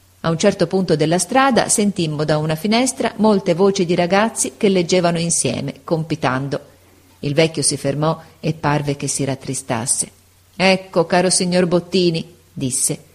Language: Italian